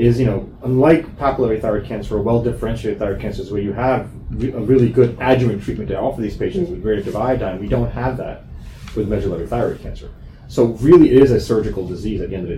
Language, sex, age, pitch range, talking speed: English, male, 30-49, 100-125 Hz, 225 wpm